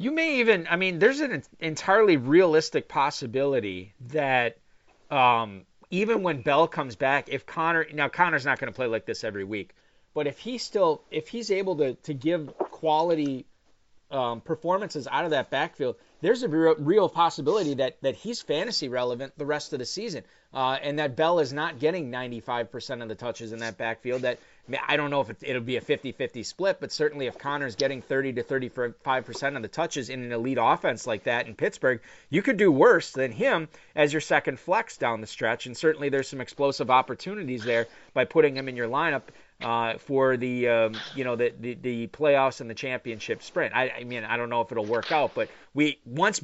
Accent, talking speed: American, 205 wpm